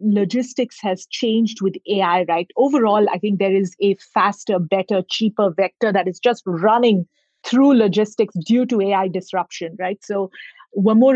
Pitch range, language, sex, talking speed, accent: 190-235 Hz, English, female, 160 wpm, Indian